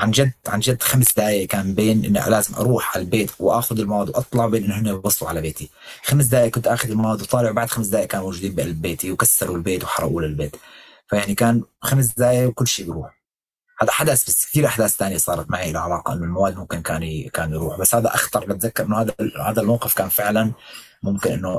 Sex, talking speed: male, 195 wpm